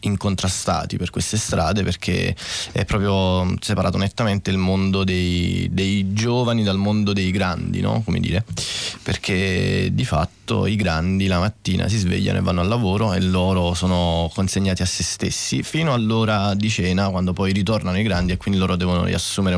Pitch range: 90-105 Hz